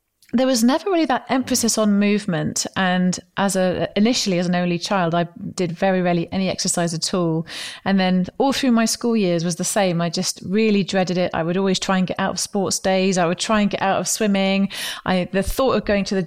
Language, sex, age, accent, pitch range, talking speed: English, female, 30-49, British, 180-215 Hz, 235 wpm